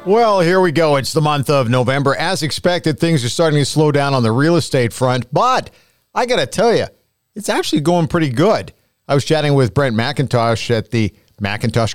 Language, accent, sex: English, American, male